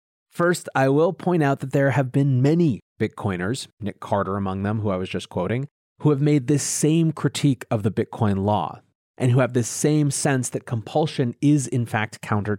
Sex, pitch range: male, 110-145 Hz